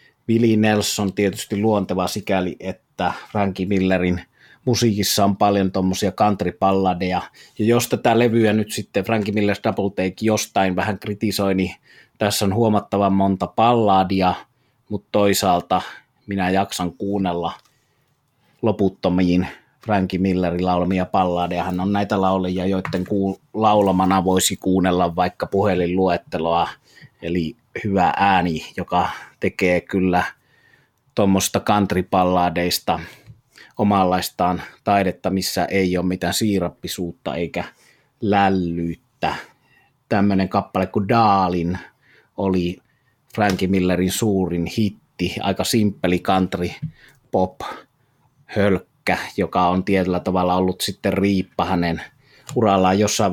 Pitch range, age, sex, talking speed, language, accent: 90-105 Hz, 30-49, male, 100 wpm, Finnish, native